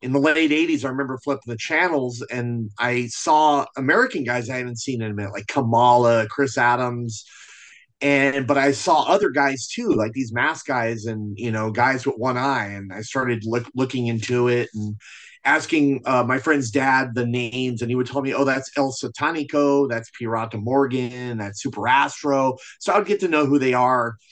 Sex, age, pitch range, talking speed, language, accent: male, 30-49, 115-140 Hz, 200 wpm, English, American